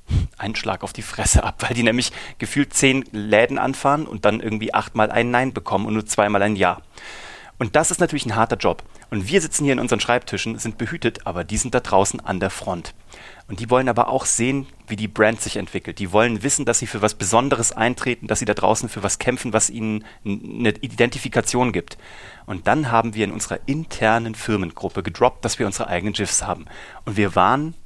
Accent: German